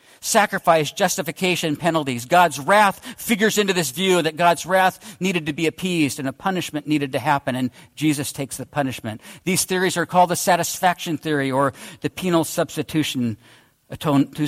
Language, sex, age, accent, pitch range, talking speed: English, male, 50-69, American, 145-190 Hz, 160 wpm